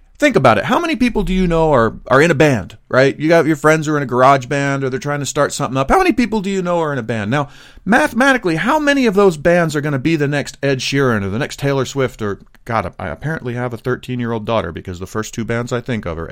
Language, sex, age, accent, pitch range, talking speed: English, male, 40-59, American, 110-175 Hz, 300 wpm